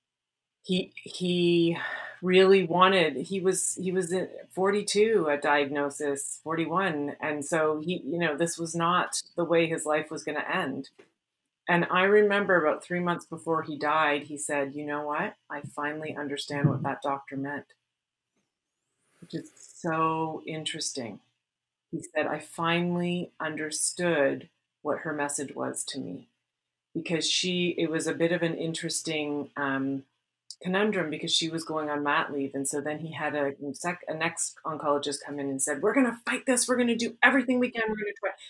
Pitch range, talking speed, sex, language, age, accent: 150-195 Hz, 170 wpm, female, English, 30-49, American